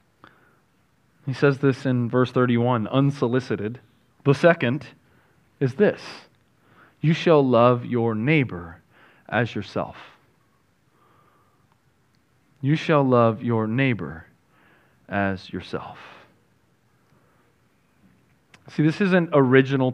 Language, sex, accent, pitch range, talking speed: English, male, American, 115-140 Hz, 85 wpm